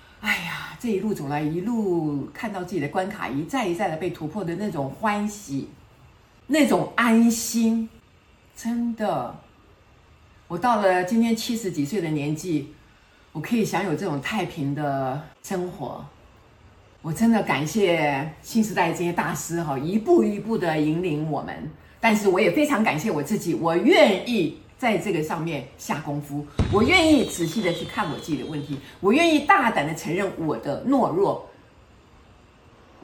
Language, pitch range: Chinese, 145-220 Hz